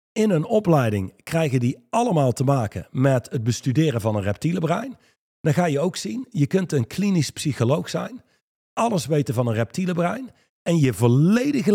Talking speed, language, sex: 180 wpm, Dutch, male